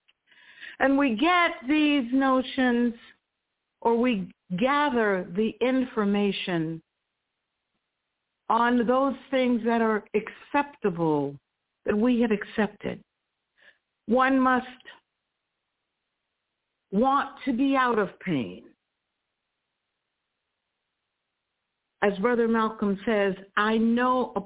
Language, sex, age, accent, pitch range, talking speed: English, female, 60-79, American, 210-270 Hz, 85 wpm